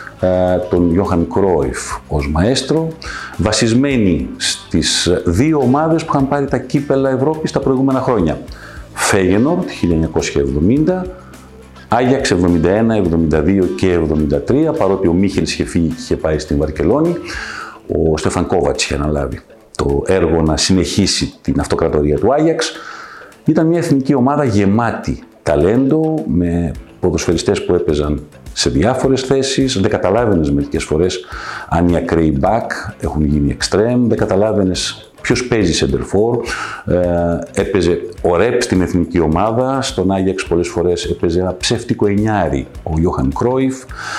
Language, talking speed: Greek, 130 wpm